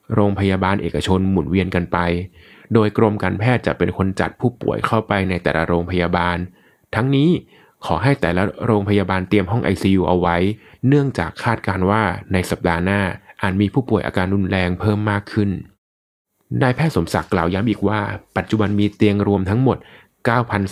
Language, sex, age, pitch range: Thai, male, 20-39, 90-110 Hz